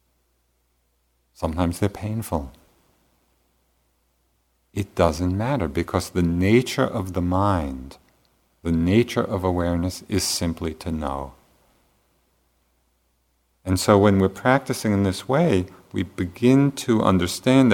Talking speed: 110 wpm